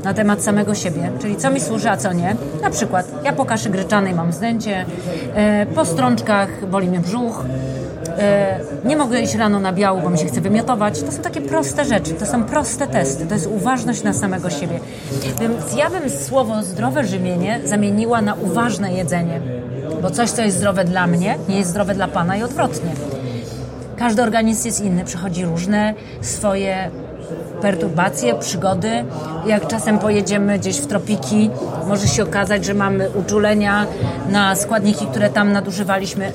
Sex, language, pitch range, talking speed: female, Polish, 170-210 Hz, 165 wpm